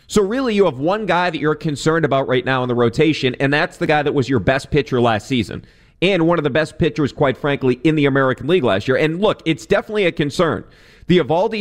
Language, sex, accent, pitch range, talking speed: English, male, American, 130-160 Hz, 250 wpm